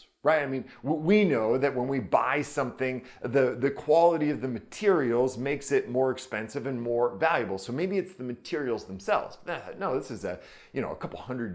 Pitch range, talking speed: 110-140 Hz, 195 wpm